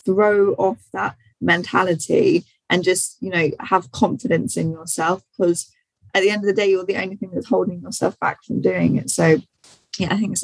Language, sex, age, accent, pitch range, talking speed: English, female, 20-39, British, 155-190 Hz, 200 wpm